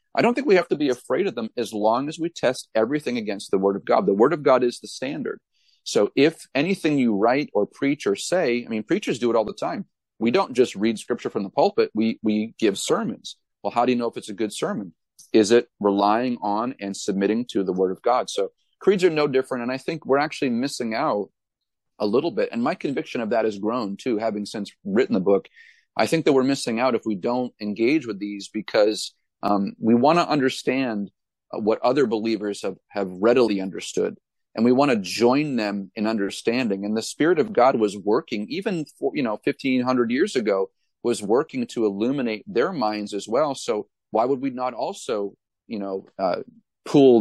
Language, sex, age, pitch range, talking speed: English, male, 40-59, 100-135 Hz, 220 wpm